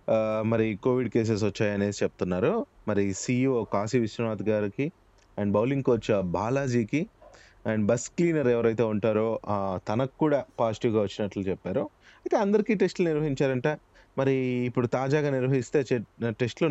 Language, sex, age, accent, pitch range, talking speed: Telugu, male, 20-39, native, 105-135 Hz, 120 wpm